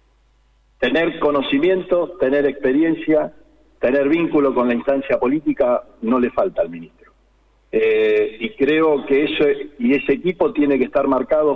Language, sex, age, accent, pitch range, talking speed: Spanish, male, 50-69, Argentinian, 125-200 Hz, 140 wpm